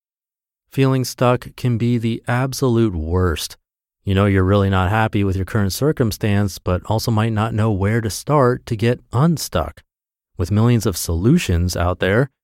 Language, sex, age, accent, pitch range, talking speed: English, male, 30-49, American, 95-120 Hz, 165 wpm